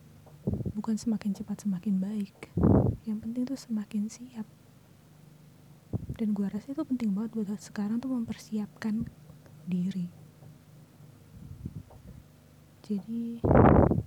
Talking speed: 90 wpm